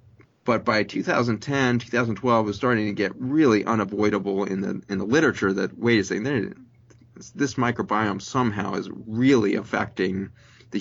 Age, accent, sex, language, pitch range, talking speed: 30-49, American, male, English, 100-115 Hz, 145 wpm